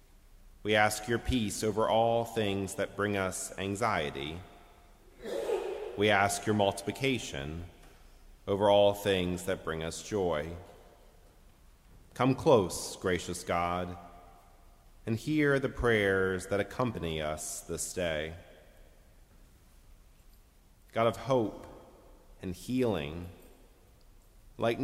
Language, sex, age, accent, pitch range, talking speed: English, male, 30-49, American, 90-115 Hz, 100 wpm